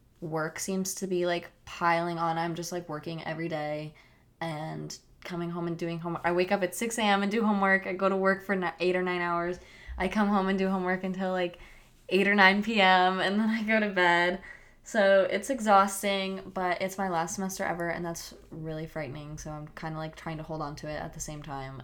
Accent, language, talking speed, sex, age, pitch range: American, English, 230 wpm, female, 20-39, 160-195 Hz